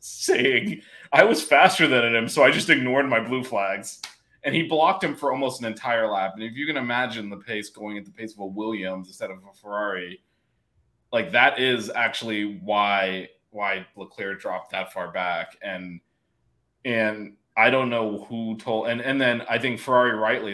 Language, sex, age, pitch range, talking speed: English, male, 20-39, 100-125 Hz, 190 wpm